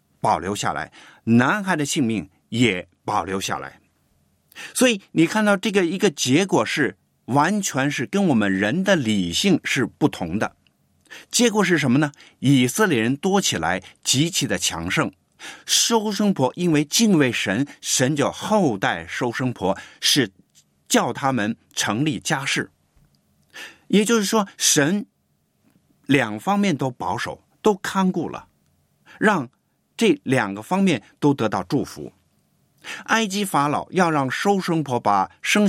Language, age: Chinese, 50-69